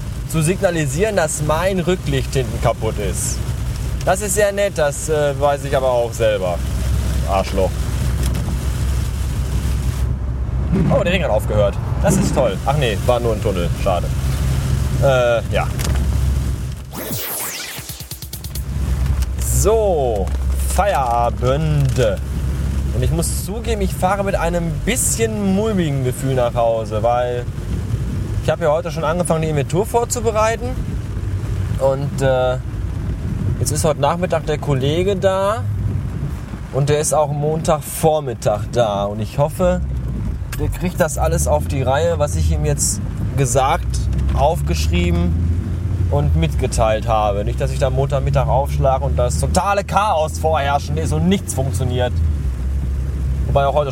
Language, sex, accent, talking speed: German, male, German, 125 wpm